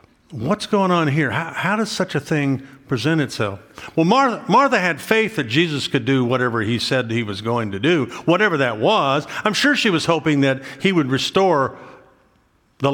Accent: American